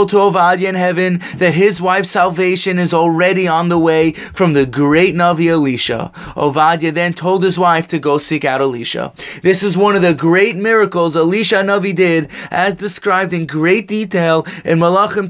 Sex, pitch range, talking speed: male, 170-200 Hz, 175 wpm